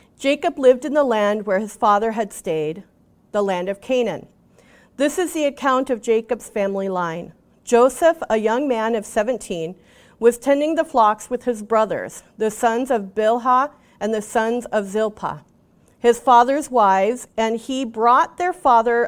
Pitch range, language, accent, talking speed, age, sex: 215-275 Hz, English, American, 165 wpm, 40-59, female